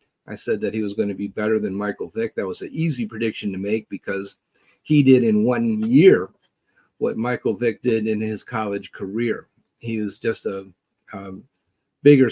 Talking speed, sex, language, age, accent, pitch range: 190 wpm, male, English, 50-69, American, 100-125 Hz